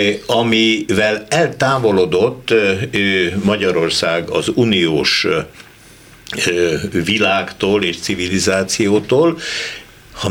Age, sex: 60-79, male